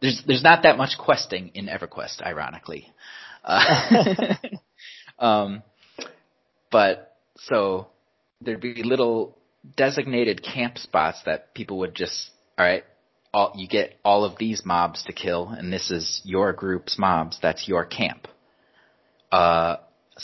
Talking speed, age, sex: 130 wpm, 30-49, male